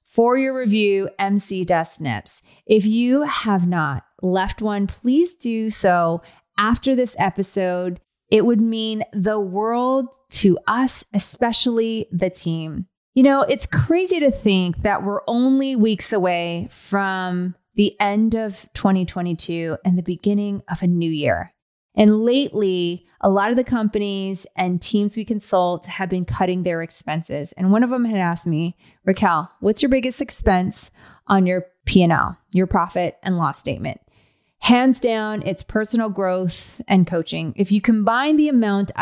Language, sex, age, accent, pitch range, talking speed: English, female, 30-49, American, 180-225 Hz, 150 wpm